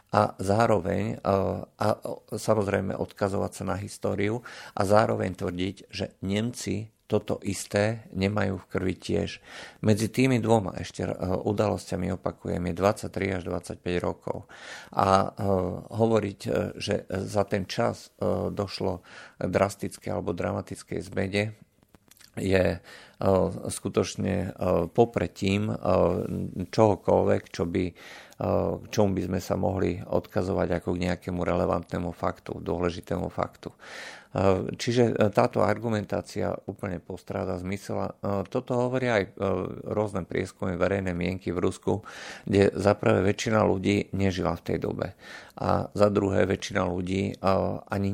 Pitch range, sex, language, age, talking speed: 90-105 Hz, male, Slovak, 50-69, 115 wpm